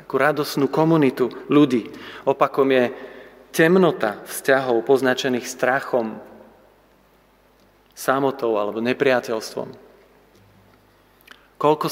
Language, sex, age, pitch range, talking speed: Slovak, male, 40-59, 120-145 Hz, 70 wpm